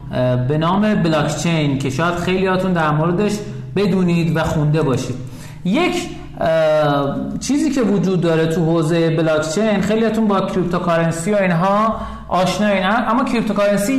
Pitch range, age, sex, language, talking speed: 150-210 Hz, 50-69, male, Persian, 130 wpm